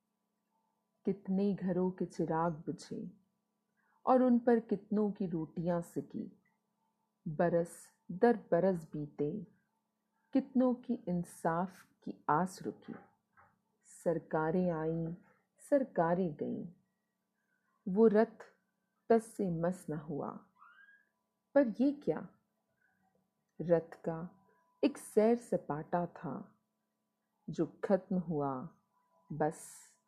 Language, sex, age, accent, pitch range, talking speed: Hindi, female, 40-59, native, 175-225 Hz, 95 wpm